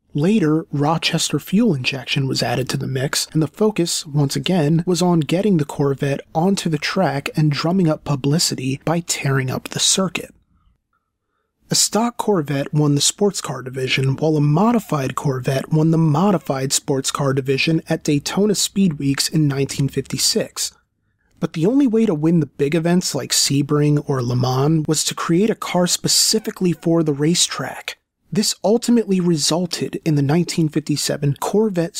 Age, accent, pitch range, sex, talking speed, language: 30-49, American, 145-180 Hz, male, 160 wpm, English